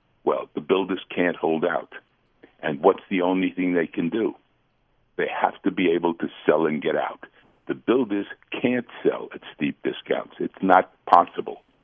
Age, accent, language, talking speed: 60-79, American, English, 170 wpm